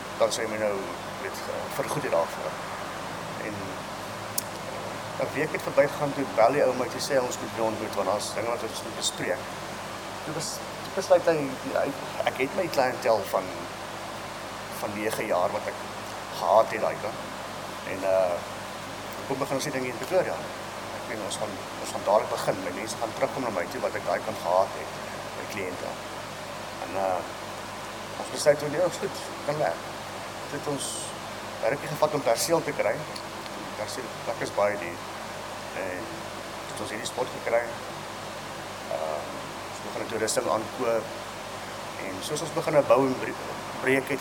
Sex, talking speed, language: male, 140 wpm, English